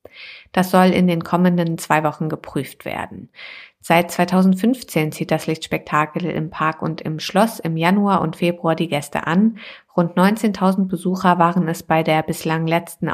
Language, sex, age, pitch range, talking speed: German, female, 50-69, 165-190 Hz, 160 wpm